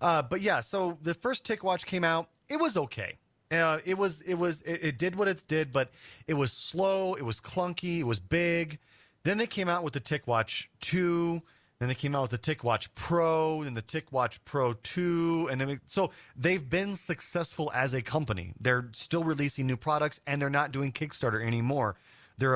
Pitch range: 120-165 Hz